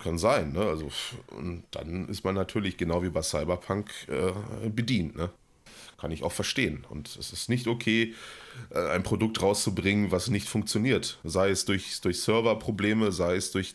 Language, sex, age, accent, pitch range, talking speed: German, male, 30-49, German, 80-100 Hz, 155 wpm